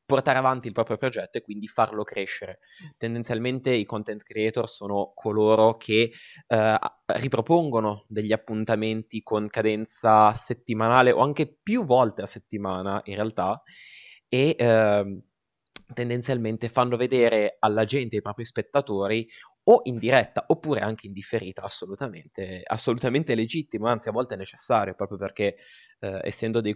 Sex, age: male, 20-39